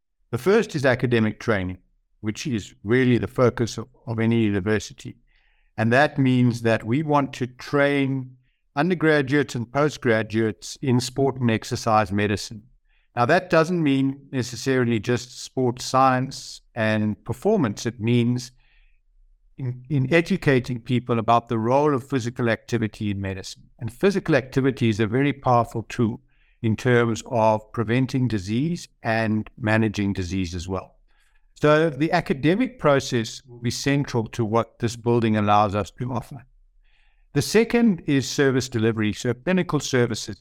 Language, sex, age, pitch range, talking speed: English, male, 60-79, 110-135 Hz, 140 wpm